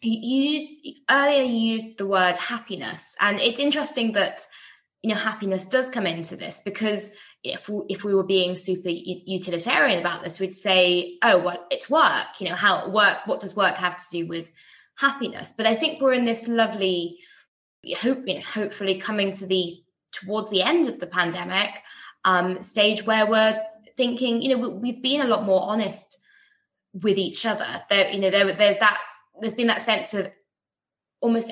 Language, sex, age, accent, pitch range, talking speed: English, female, 20-39, British, 185-230 Hz, 185 wpm